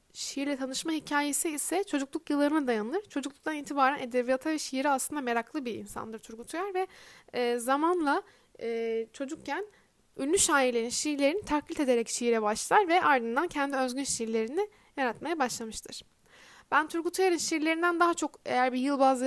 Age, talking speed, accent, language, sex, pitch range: 10-29, 140 wpm, native, Turkish, female, 245-305 Hz